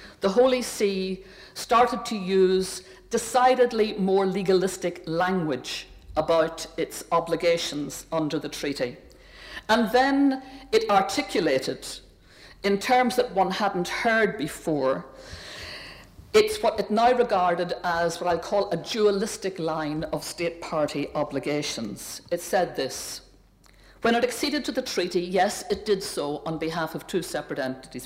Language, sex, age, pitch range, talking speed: English, female, 60-79, 155-225 Hz, 135 wpm